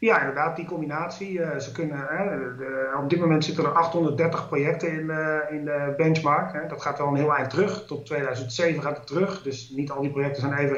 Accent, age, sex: Dutch, 30-49, male